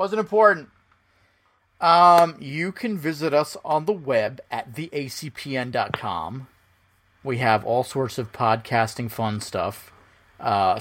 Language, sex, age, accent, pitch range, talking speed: English, male, 30-49, American, 100-145 Hz, 115 wpm